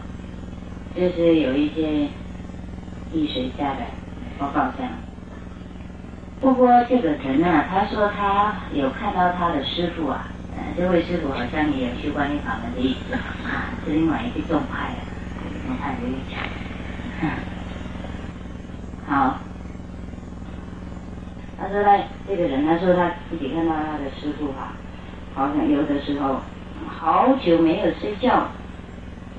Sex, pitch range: female, 150-205 Hz